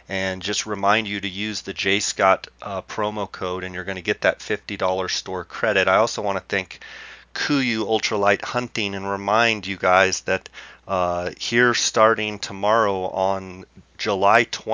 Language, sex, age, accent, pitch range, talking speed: English, male, 30-49, American, 95-110 Hz, 165 wpm